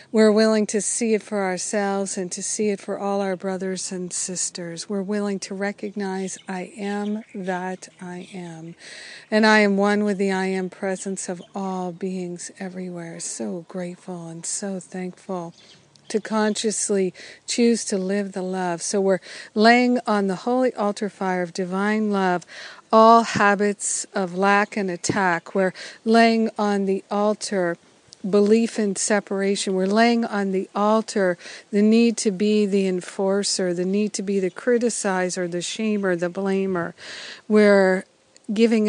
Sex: female